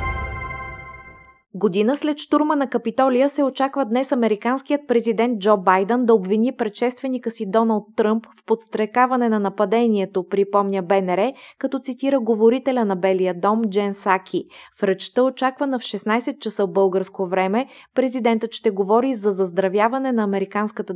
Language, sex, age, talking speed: Bulgarian, female, 20-39, 135 wpm